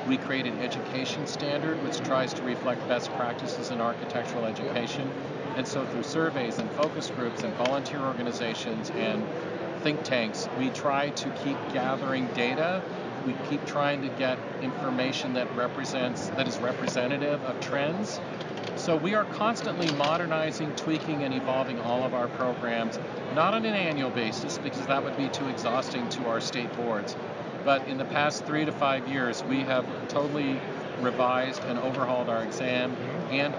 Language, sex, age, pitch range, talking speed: English, male, 50-69, 125-145 Hz, 160 wpm